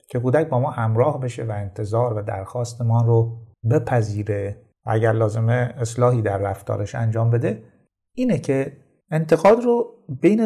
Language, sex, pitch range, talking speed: Persian, male, 110-145 Hz, 145 wpm